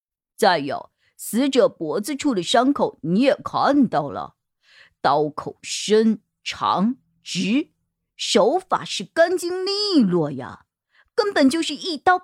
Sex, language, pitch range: female, Chinese, 205-300 Hz